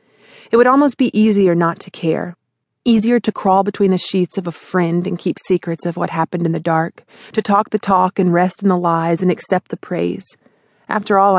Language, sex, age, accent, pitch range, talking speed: English, female, 30-49, American, 170-205 Hz, 215 wpm